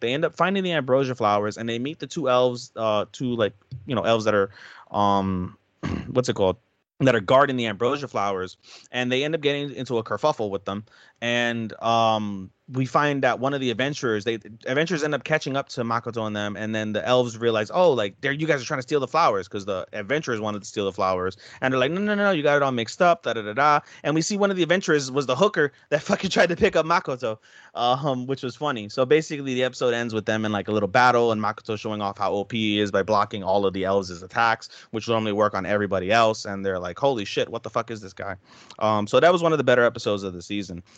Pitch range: 105-130 Hz